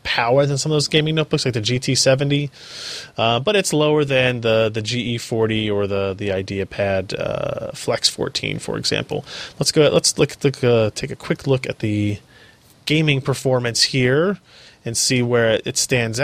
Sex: male